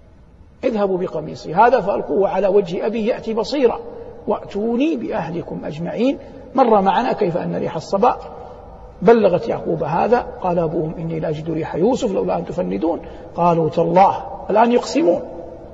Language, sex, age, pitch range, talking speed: Arabic, male, 60-79, 175-235 Hz, 130 wpm